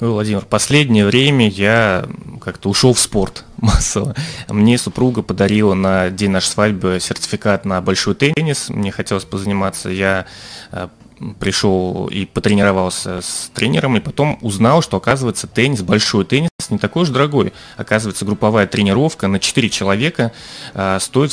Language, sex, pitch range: Russian, male, 100-130 Hz